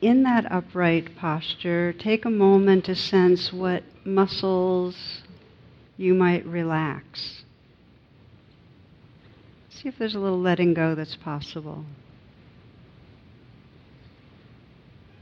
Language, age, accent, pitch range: English, 60-79, American, 130-185 Hz